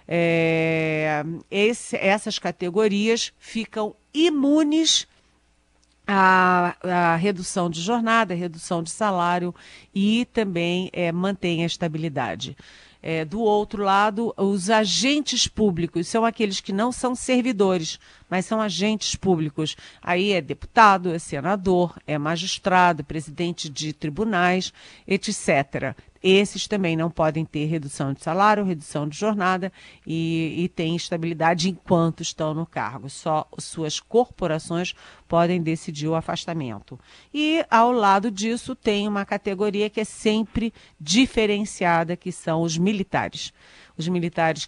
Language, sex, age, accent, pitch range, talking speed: Portuguese, female, 50-69, Brazilian, 155-205 Hz, 125 wpm